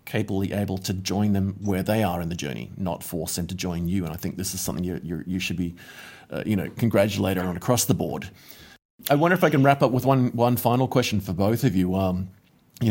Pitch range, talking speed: 95-115 Hz, 245 wpm